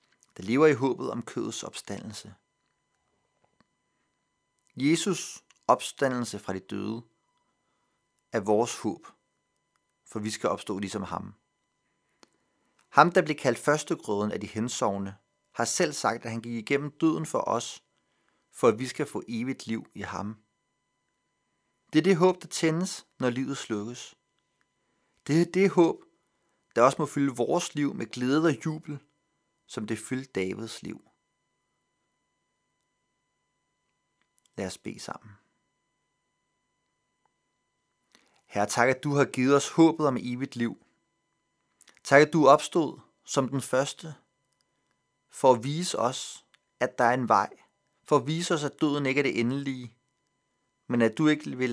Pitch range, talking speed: 115-150 Hz, 140 wpm